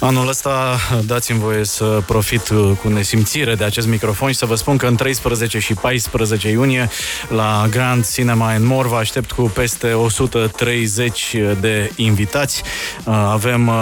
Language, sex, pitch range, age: Romanian, male, 110-130 Hz, 20-39